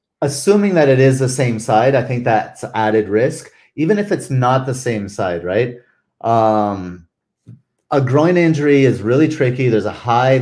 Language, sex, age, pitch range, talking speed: English, male, 30-49, 110-135 Hz, 175 wpm